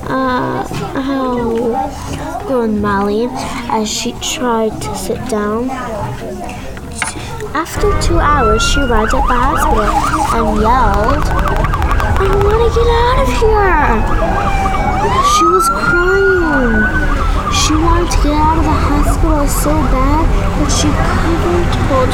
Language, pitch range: English, 200-335 Hz